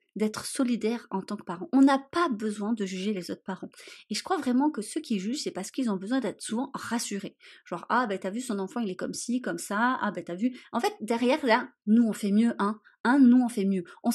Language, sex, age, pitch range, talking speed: French, female, 30-49, 195-255 Hz, 265 wpm